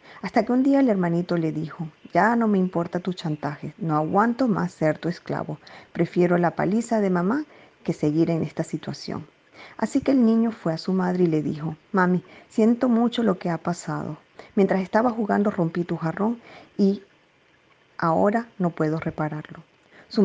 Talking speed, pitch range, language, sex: 180 wpm, 170-220 Hz, Spanish, female